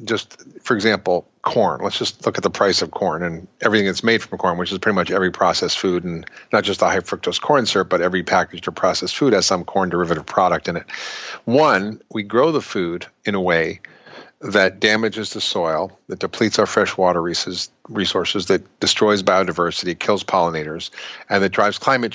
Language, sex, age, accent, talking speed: English, male, 50-69, American, 190 wpm